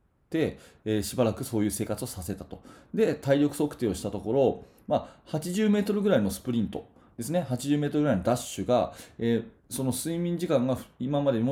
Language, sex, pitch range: Japanese, male, 105-155 Hz